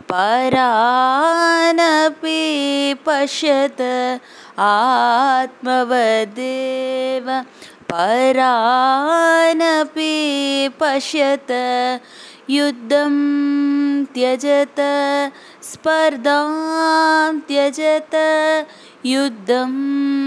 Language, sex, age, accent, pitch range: Tamil, female, 20-39, native, 220-290 Hz